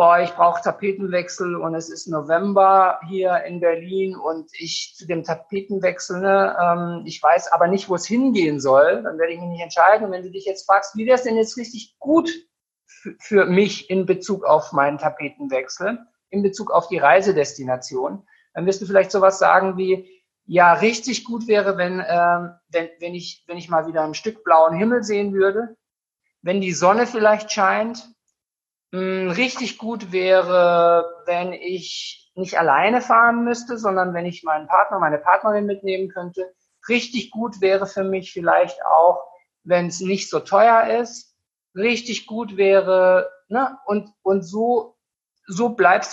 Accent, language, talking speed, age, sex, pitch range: German, German, 170 wpm, 50-69, male, 175-215 Hz